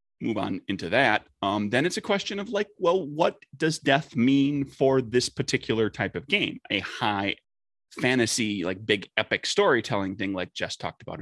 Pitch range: 95-130 Hz